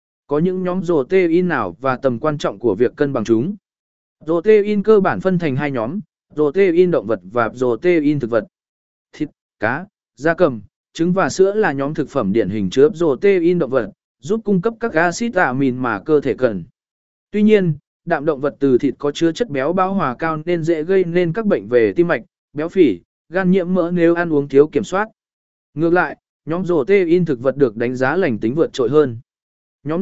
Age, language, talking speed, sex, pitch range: 20-39, Vietnamese, 210 wpm, male, 140-195 Hz